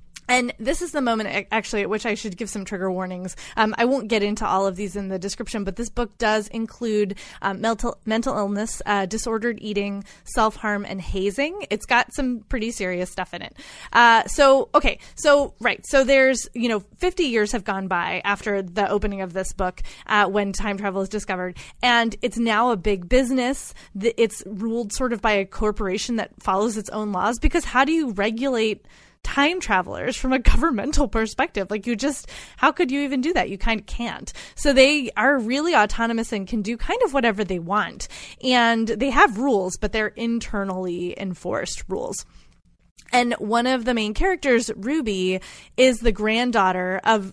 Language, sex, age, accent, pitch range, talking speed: English, female, 20-39, American, 200-245 Hz, 190 wpm